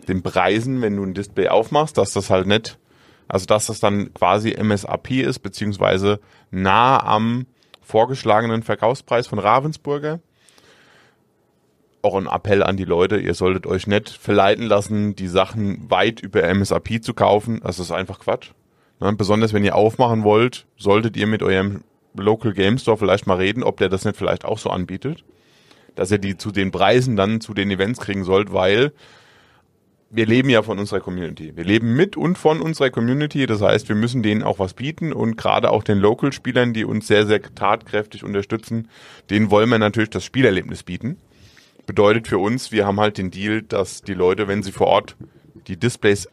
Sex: male